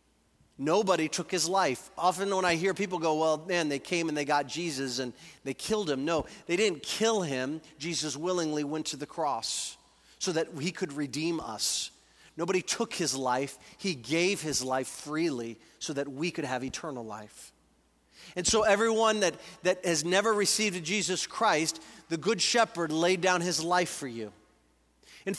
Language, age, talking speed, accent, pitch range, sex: English, 40-59, 175 wpm, American, 140-200 Hz, male